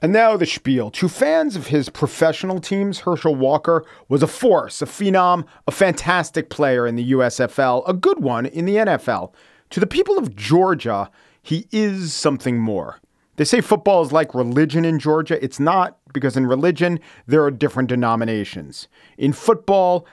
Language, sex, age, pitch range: English, male, 40-59, 130-180 Hz